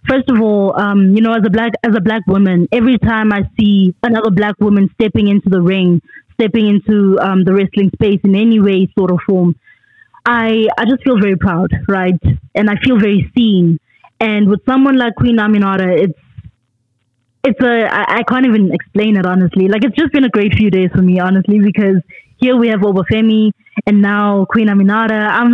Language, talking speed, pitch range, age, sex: English, 200 wpm, 190-235 Hz, 20-39, female